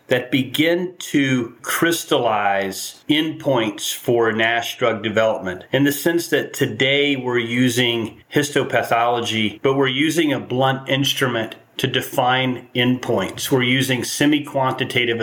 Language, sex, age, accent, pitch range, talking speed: English, male, 40-59, American, 120-150 Hz, 115 wpm